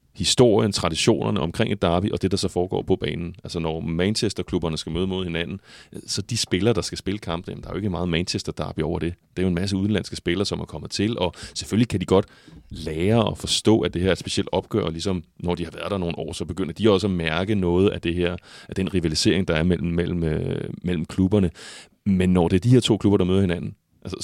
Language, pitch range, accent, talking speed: Danish, 85-105 Hz, native, 250 wpm